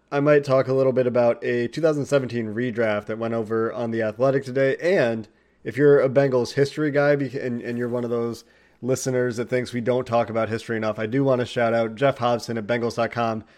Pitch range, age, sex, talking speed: 115-135 Hz, 30-49, male, 215 wpm